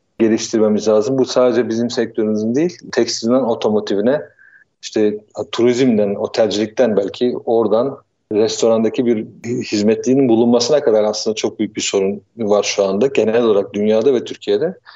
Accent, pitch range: native, 110-130 Hz